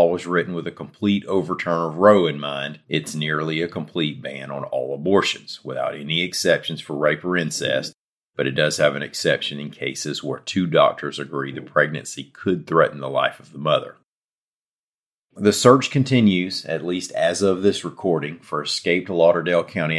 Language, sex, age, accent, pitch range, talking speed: English, male, 40-59, American, 75-85 Hz, 175 wpm